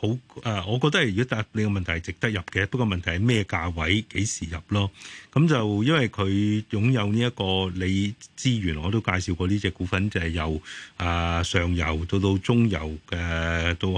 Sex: male